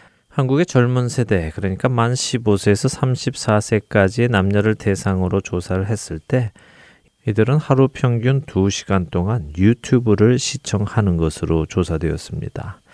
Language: Korean